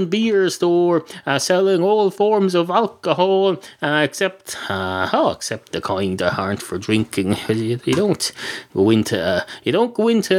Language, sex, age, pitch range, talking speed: English, male, 30-49, 115-175 Hz, 170 wpm